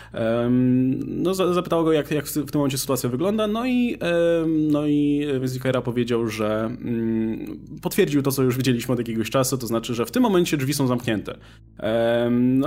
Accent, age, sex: native, 20-39, male